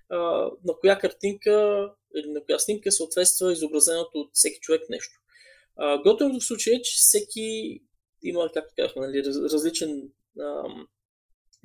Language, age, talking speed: Bulgarian, 20-39, 140 wpm